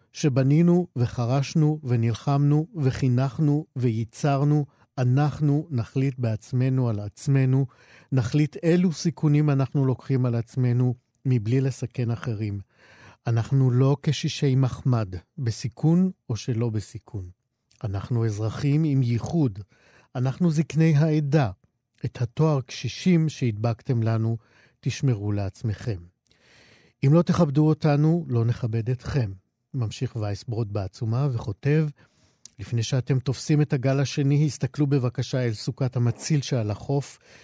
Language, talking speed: Hebrew, 105 wpm